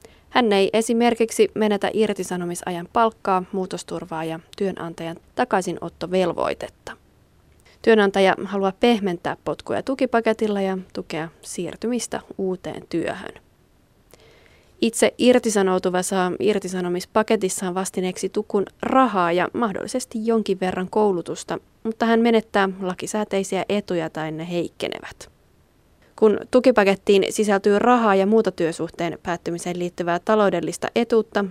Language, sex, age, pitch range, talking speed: Finnish, female, 30-49, 180-220 Hz, 95 wpm